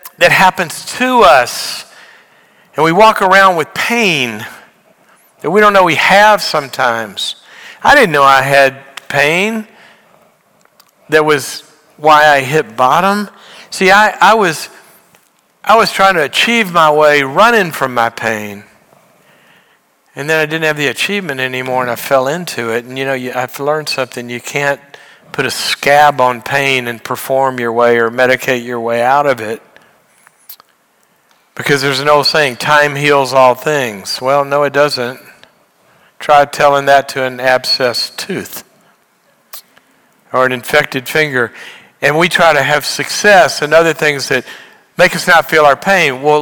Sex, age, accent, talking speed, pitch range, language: male, 60-79, American, 155 wpm, 130-165 Hz, English